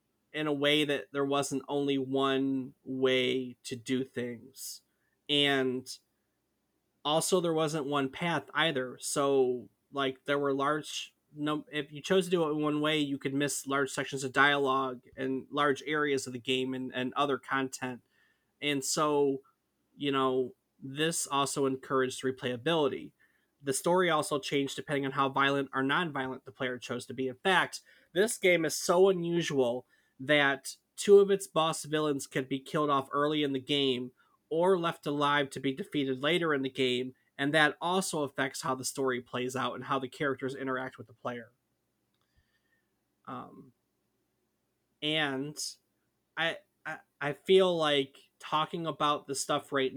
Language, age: English, 20-39